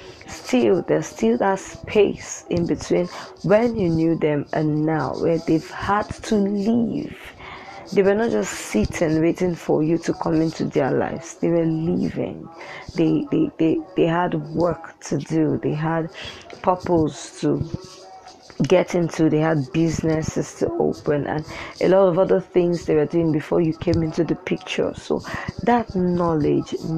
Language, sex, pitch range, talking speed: English, female, 155-195 Hz, 155 wpm